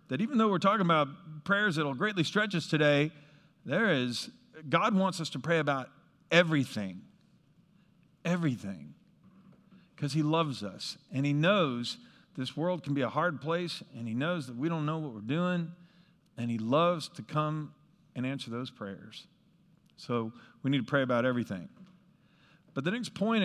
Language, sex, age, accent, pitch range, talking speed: English, male, 50-69, American, 150-200 Hz, 170 wpm